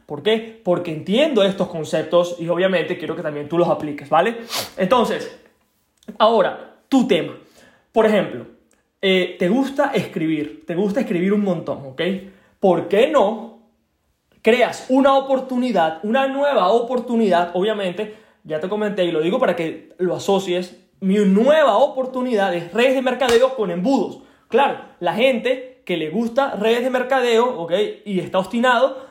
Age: 20-39